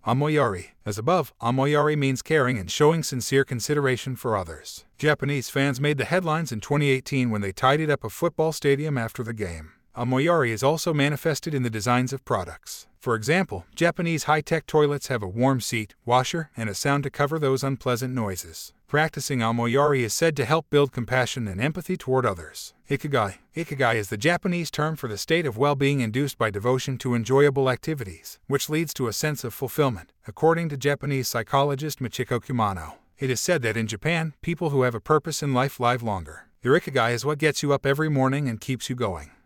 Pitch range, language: 120-150 Hz, Hindi